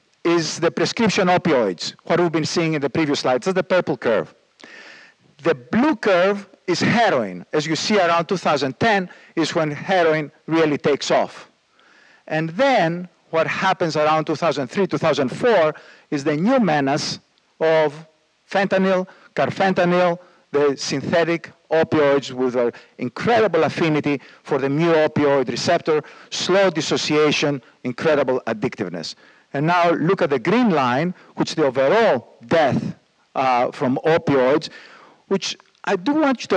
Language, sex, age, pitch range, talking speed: English, male, 50-69, 155-200 Hz, 135 wpm